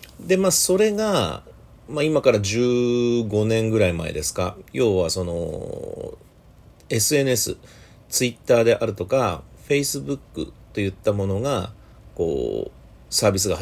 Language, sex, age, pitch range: Japanese, male, 40-59, 90-140 Hz